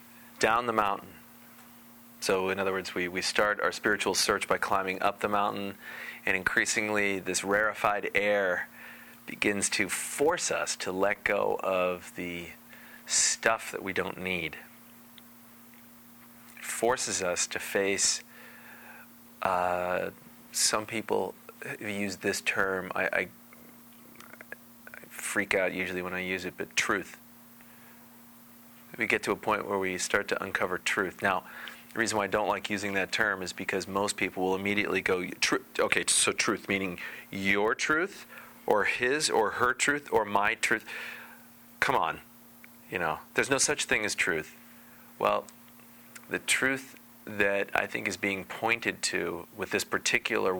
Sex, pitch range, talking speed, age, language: male, 95-120 Hz, 150 wpm, 30-49, English